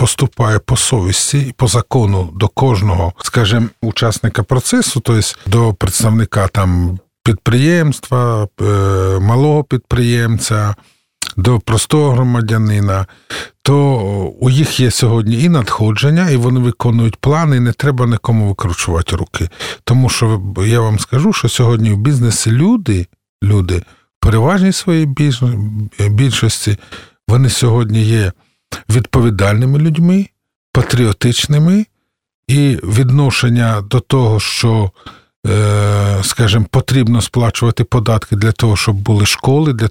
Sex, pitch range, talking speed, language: male, 105-130 Hz, 110 wpm, Russian